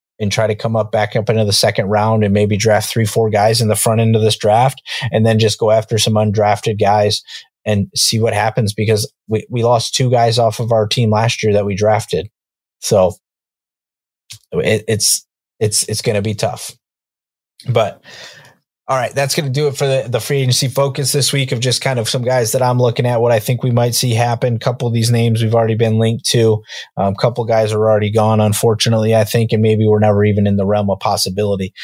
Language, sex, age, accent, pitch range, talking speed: English, male, 20-39, American, 105-120 Hz, 230 wpm